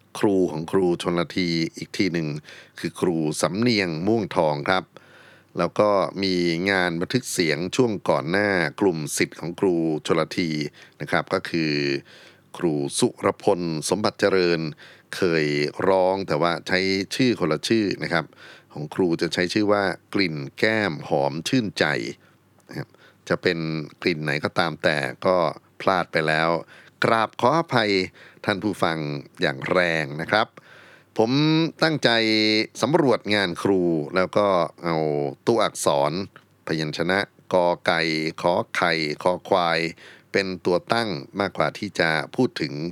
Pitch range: 80-100 Hz